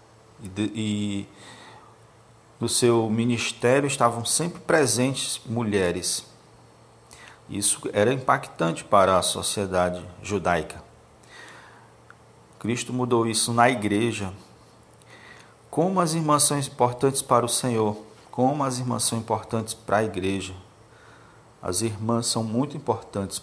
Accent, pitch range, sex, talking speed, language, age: Brazilian, 105-125 Hz, male, 105 wpm, Portuguese, 50-69